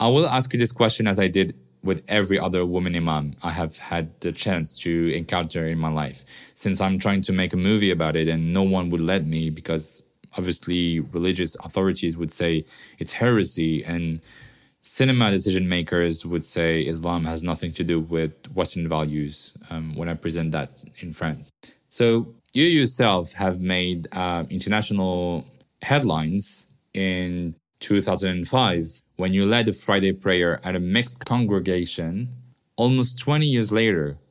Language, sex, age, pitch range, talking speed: French, male, 20-39, 85-105 Hz, 160 wpm